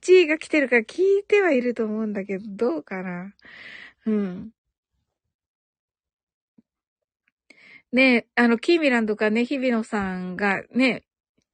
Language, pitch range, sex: Japanese, 230-370 Hz, female